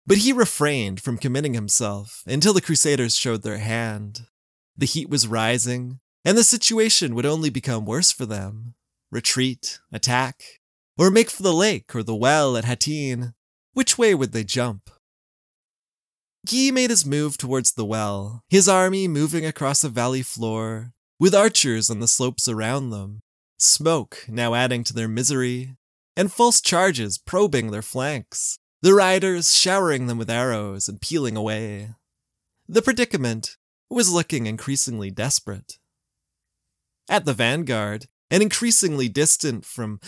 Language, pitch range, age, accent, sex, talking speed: English, 115-165 Hz, 20-39, American, male, 145 wpm